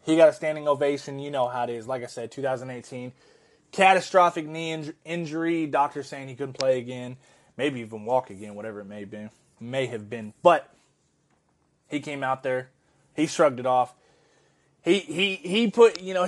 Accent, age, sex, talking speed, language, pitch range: American, 20-39, male, 190 wpm, English, 130-180 Hz